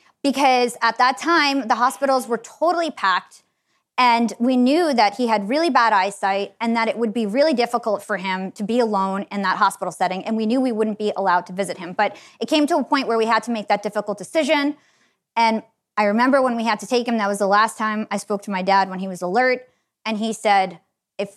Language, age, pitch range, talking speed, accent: English, 20-39, 205-260 Hz, 240 wpm, American